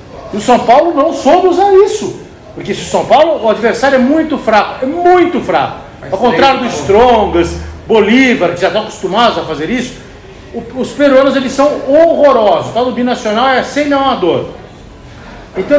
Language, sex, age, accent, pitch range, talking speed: Portuguese, male, 50-69, Brazilian, 190-265 Hz, 175 wpm